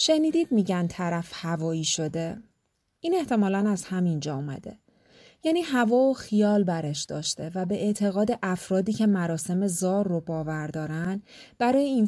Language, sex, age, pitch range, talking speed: Persian, female, 30-49, 170-220 Hz, 135 wpm